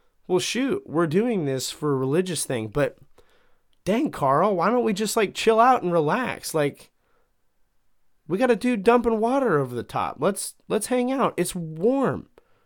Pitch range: 140-220 Hz